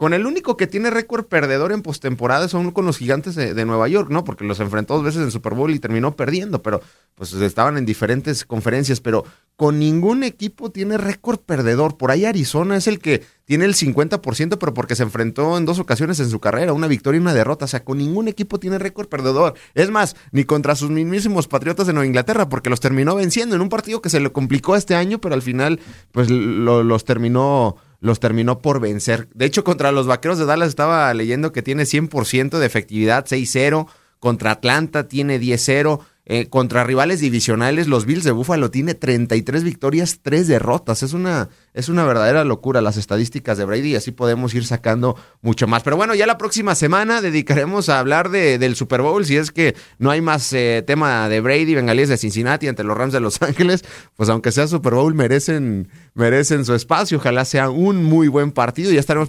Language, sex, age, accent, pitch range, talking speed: Spanish, male, 30-49, Mexican, 125-170 Hz, 210 wpm